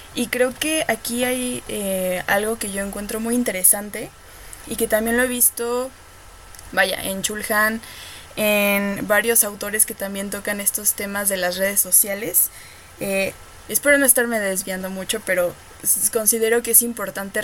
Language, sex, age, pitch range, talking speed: Spanish, female, 20-39, 195-235 Hz, 150 wpm